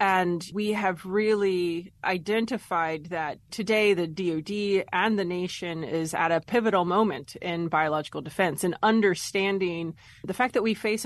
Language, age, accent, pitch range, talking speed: English, 30-49, American, 160-205 Hz, 145 wpm